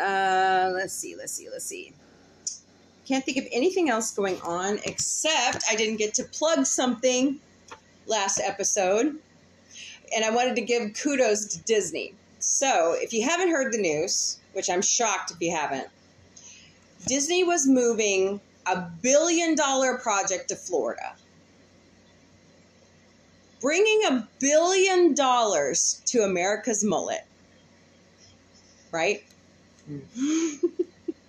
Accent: American